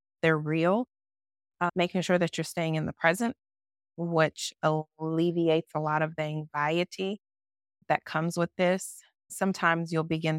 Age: 30-49